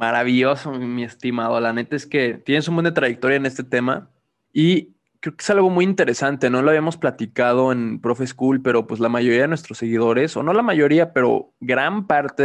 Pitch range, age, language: 120-150 Hz, 20-39, Spanish